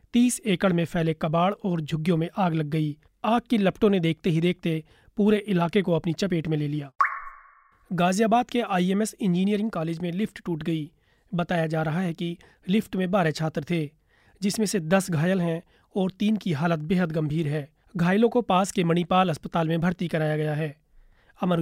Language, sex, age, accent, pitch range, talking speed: Hindi, male, 30-49, native, 160-190 Hz, 85 wpm